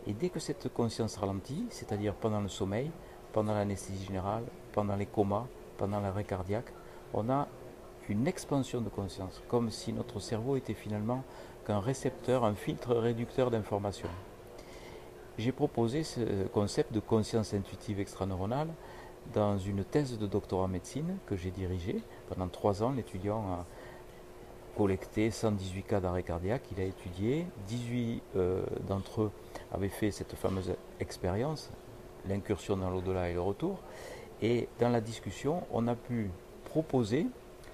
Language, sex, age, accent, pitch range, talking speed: French, male, 50-69, French, 95-115 Hz, 145 wpm